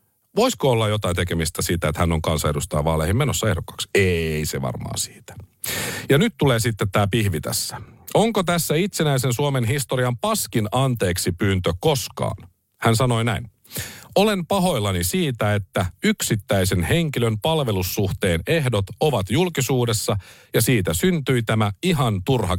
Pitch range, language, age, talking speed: 100-145 Hz, Finnish, 50-69, 135 wpm